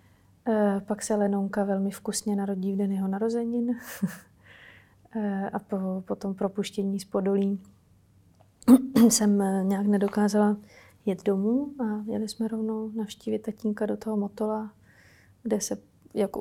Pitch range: 190-215 Hz